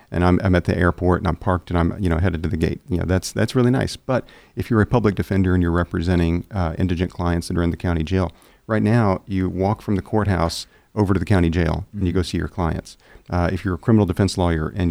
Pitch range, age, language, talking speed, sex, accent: 90-105 Hz, 40-59, English, 270 wpm, male, American